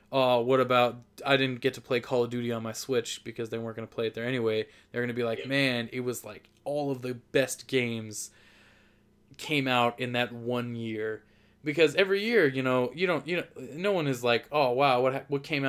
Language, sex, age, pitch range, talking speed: English, male, 20-39, 110-135 Hz, 235 wpm